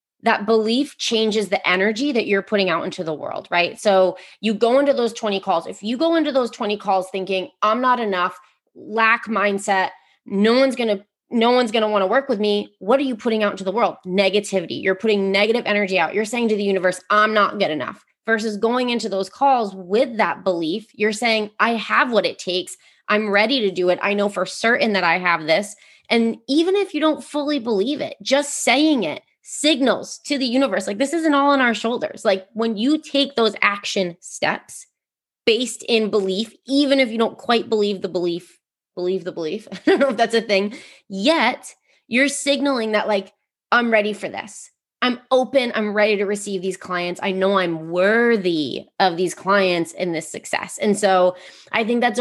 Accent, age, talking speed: American, 20-39, 200 wpm